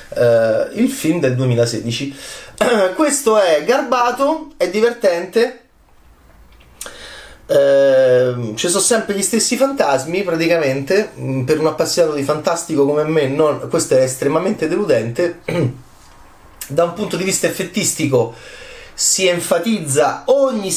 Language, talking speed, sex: Italian, 105 wpm, male